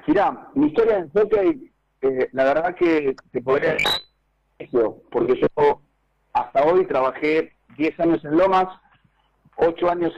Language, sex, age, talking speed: Spanish, male, 40-59, 130 wpm